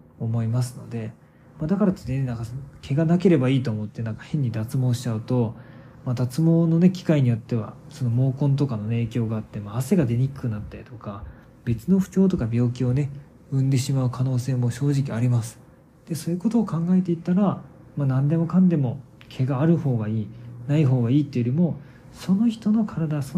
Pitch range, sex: 120-150 Hz, male